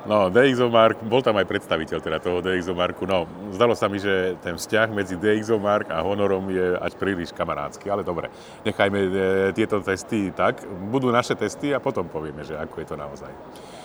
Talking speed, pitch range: 180 wpm, 90-110 Hz